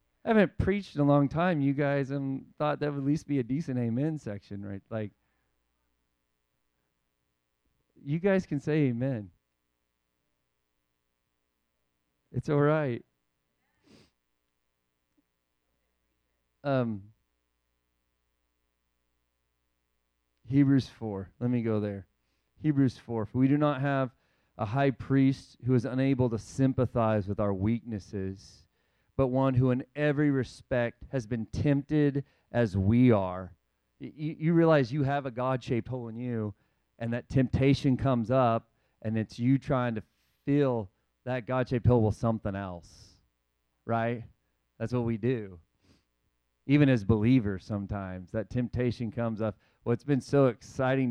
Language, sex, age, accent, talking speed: English, male, 40-59, American, 130 wpm